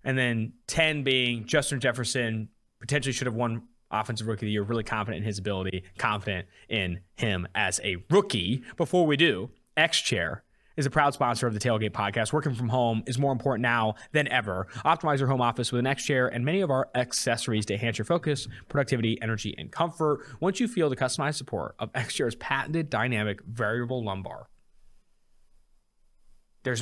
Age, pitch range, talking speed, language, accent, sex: 20-39, 110-145 Hz, 180 wpm, English, American, male